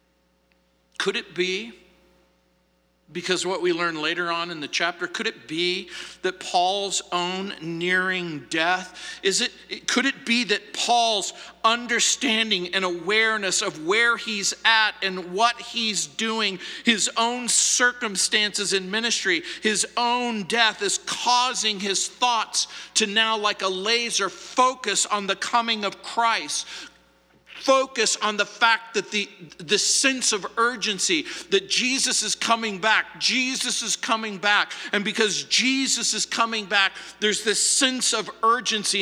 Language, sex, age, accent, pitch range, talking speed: English, male, 50-69, American, 185-235 Hz, 140 wpm